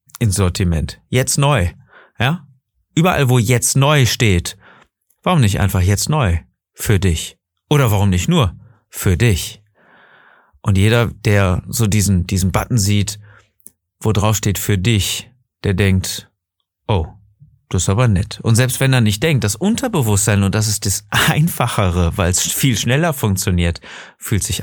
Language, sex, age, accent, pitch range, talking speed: German, male, 40-59, German, 95-120 Hz, 150 wpm